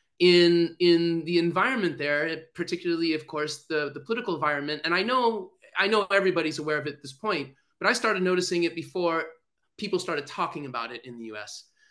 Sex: male